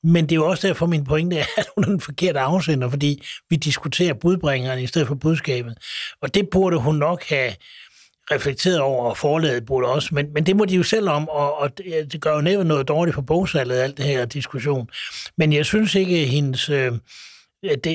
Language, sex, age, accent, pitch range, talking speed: Danish, male, 60-79, native, 140-175 Hz, 215 wpm